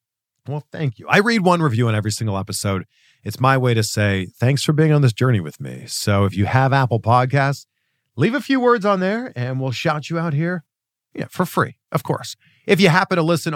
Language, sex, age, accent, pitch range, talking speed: English, male, 40-59, American, 115-165 Hz, 225 wpm